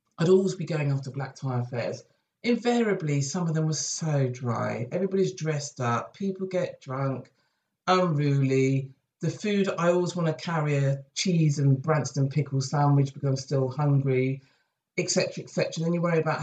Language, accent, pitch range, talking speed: English, British, 135-180 Hz, 165 wpm